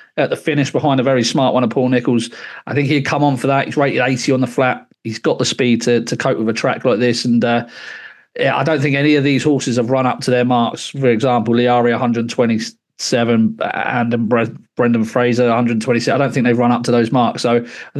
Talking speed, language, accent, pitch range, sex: 235 wpm, English, British, 120-145 Hz, male